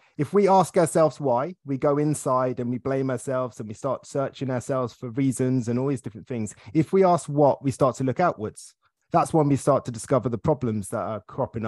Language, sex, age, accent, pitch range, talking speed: English, male, 20-39, British, 125-160 Hz, 225 wpm